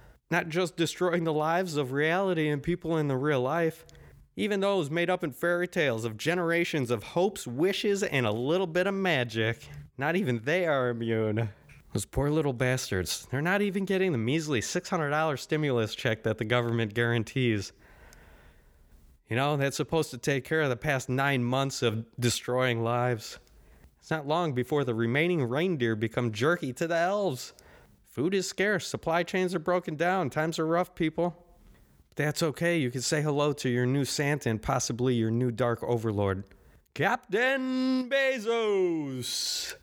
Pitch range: 115-175 Hz